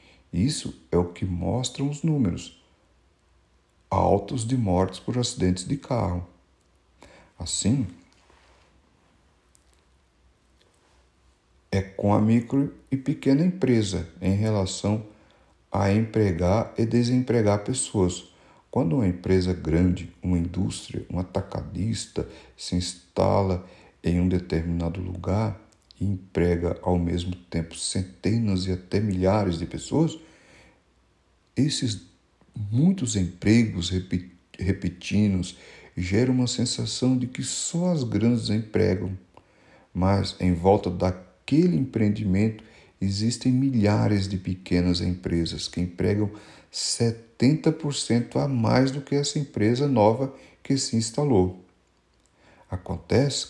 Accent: Brazilian